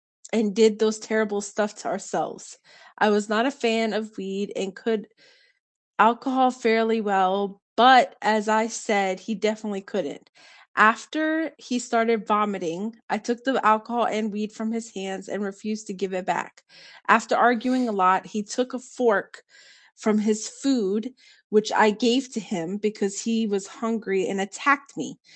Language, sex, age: English, female, 20-39